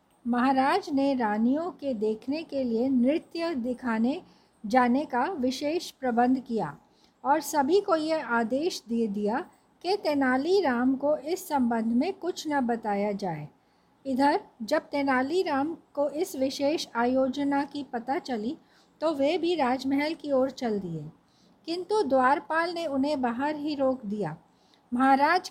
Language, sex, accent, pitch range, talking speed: Hindi, female, native, 240-310 Hz, 140 wpm